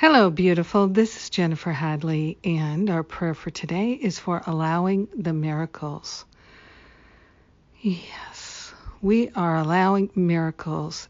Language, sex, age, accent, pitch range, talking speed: English, female, 60-79, American, 165-190 Hz, 115 wpm